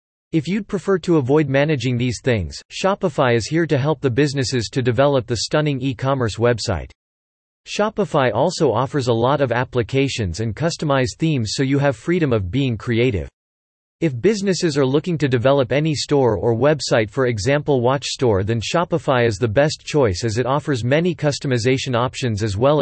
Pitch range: 115-150 Hz